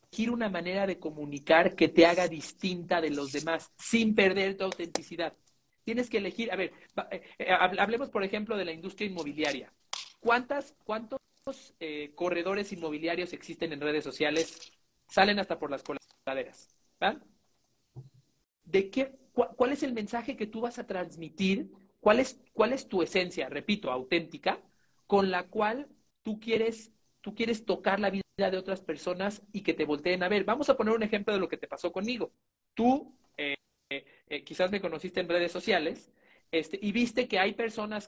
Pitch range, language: 160-215 Hz, Spanish